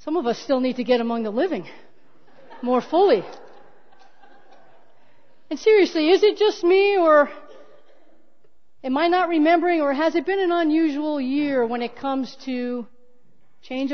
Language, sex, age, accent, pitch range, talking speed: English, female, 40-59, American, 265-330 Hz, 150 wpm